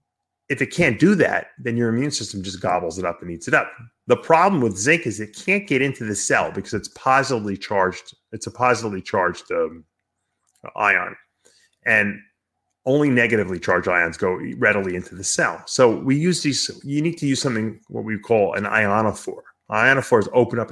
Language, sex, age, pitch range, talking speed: English, male, 30-49, 105-135 Hz, 190 wpm